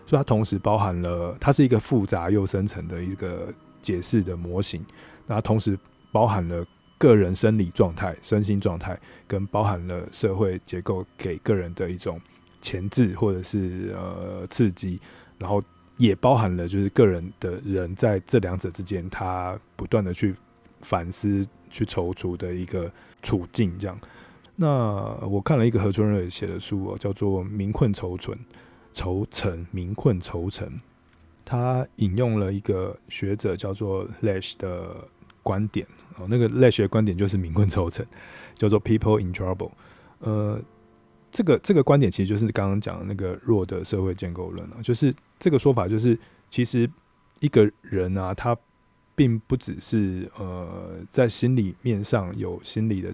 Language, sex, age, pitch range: Chinese, male, 20-39, 90-110 Hz